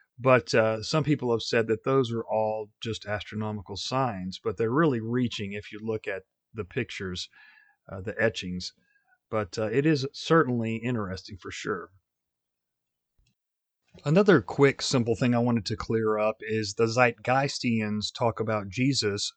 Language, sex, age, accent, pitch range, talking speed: English, male, 40-59, American, 105-130 Hz, 150 wpm